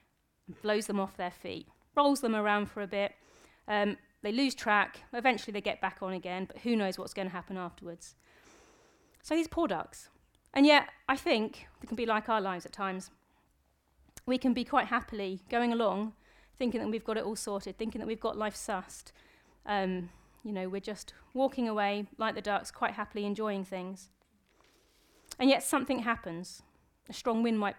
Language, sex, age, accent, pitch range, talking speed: English, female, 30-49, British, 190-230 Hz, 190 wpm